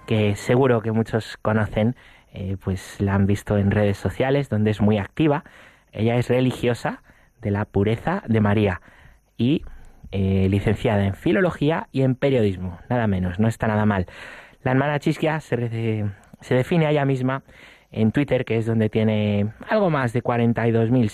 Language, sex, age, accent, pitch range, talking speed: Spanish, male, 20-39, Spanish, 105-140 Hz, 165 wpm